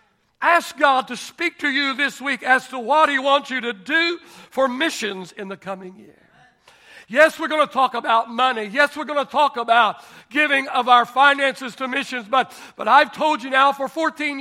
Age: 60-79